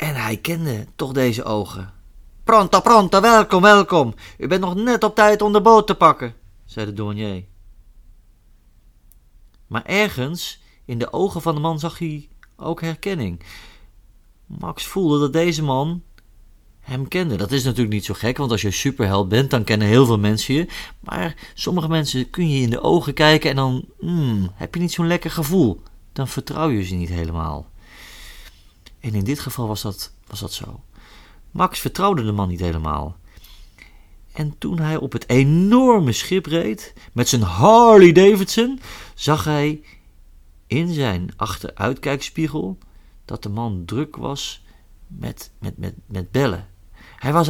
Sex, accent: male, Dutch